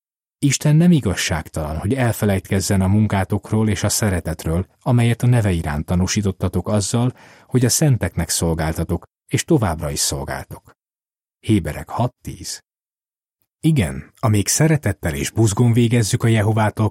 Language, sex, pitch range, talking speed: Hungarian, male, 80-115 Hz, 120 wpm